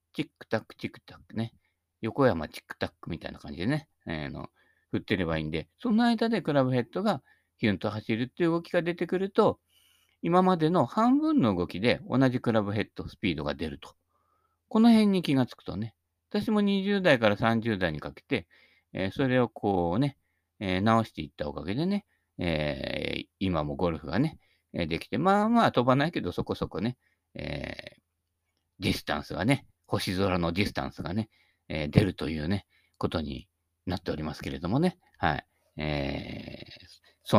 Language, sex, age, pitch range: Japanese, male, 50-69, 85-140 Hz